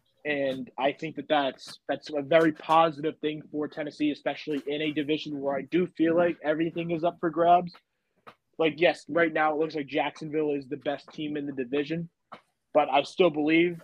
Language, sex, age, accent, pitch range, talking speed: English, male, 20-39, American, 145-165 Hz, 195 wpm